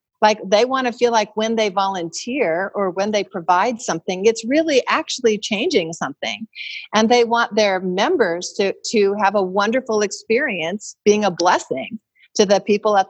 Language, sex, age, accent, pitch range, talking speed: English, female, 50-69, American, 180-230 Hz, 170 wpm